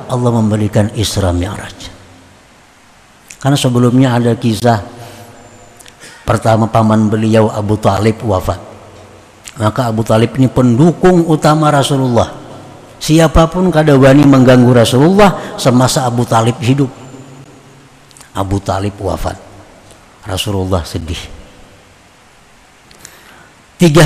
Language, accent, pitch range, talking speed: Indonesian, native, 105-165 Hz, 85 wpm